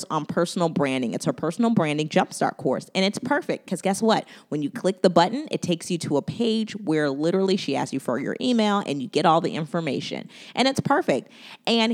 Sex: female